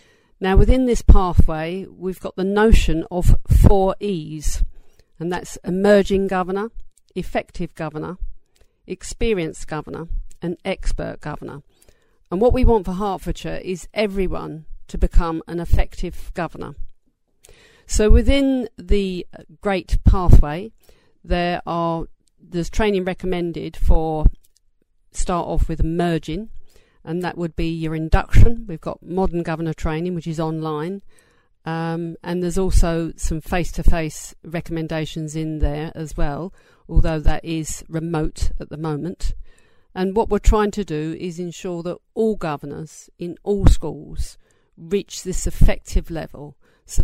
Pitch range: 160-190 Hz